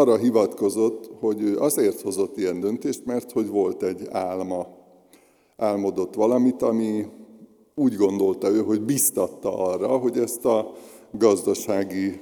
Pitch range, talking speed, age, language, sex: 100-125 Hz, 125 wpm, 60-79, Hungarian, male